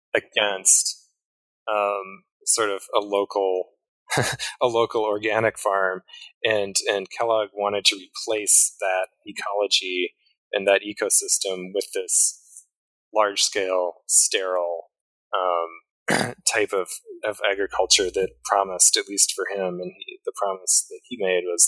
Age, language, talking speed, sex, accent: 20-39, English, 125 wpm, male, American